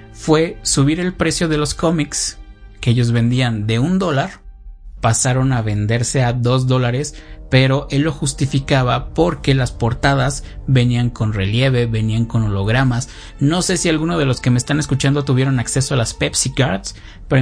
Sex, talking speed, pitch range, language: male, 170 wpm, 120-150 Hz, Spanish